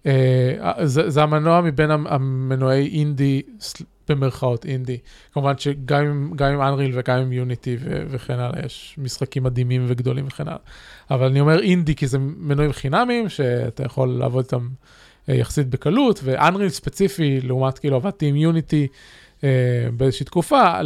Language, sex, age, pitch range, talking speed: Hebrew, male, 20-39, 130-150 Hz, 140 wpm